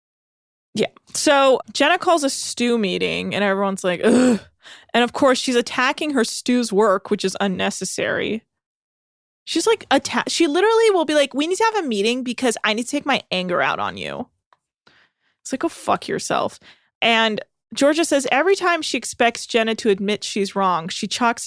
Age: 20-39